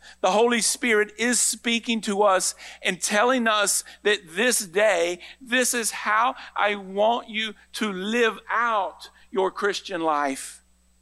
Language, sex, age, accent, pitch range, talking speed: English, male, 50-69, American, 145-210 Hz, 135 wpm